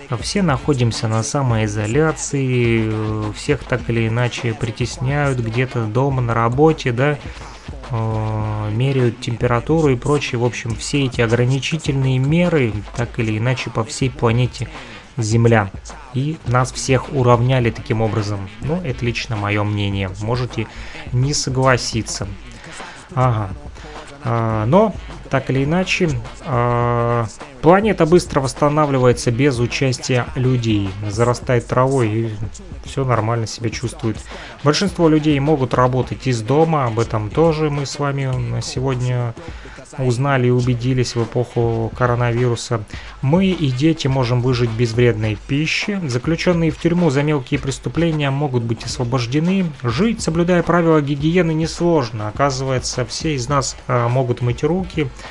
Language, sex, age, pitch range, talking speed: Russian, male, 20-39, 115-145 Hz, 120 wpm